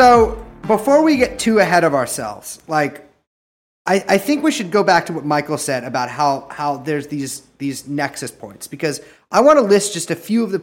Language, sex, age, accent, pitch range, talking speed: English, male, 30-49, American, 125-165 Hz, 215 wpm